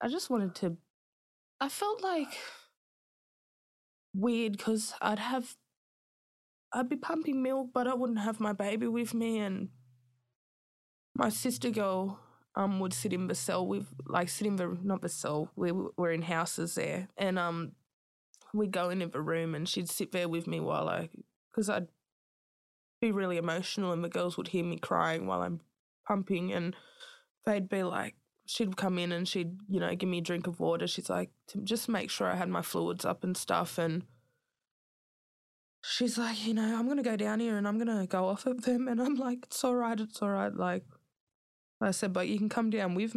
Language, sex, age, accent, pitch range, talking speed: English, female, 20-39, Australian, 165-220 Hz, 195 wpm